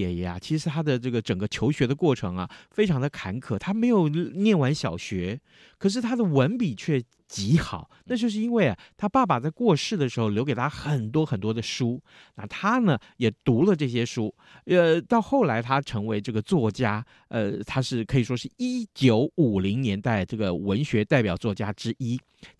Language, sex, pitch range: Chinese, male, 110-160 Hz